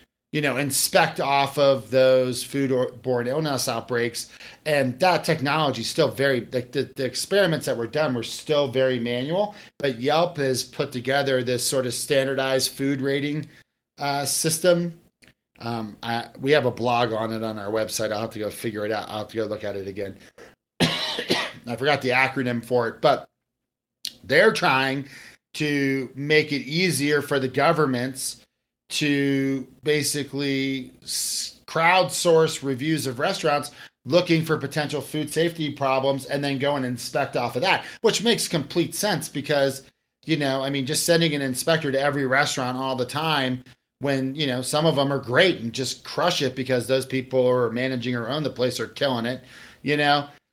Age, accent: 40-59, American